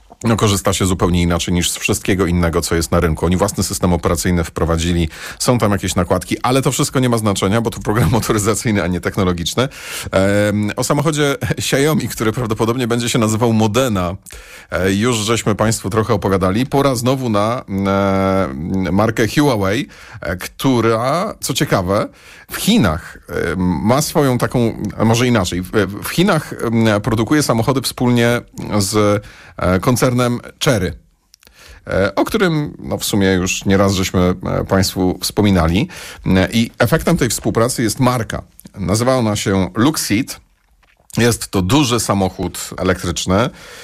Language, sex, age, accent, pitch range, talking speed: Polish, male, 40-59, native, 95-120 Hz, 145 wpm